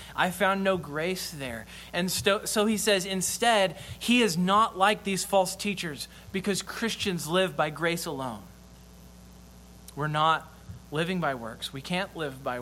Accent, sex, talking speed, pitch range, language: American, male, 155 wpm, 150-200 Hz, English